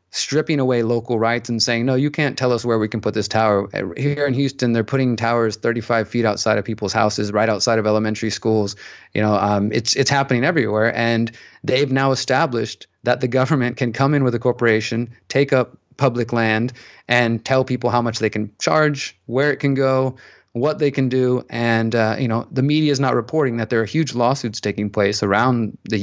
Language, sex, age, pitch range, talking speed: English, male, 30-49, 110-130 Hz, 210 wpm